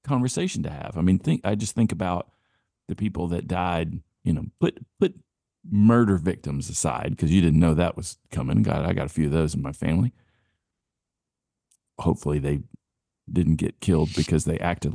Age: 50-69